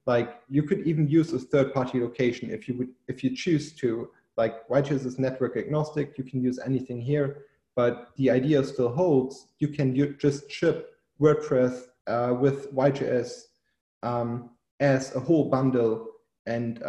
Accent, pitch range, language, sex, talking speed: German, 125-150 Hz, English, male, 165 wpm